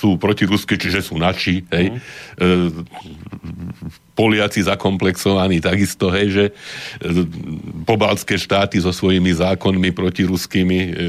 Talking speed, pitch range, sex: 85 wpm, 85-100 Hz, male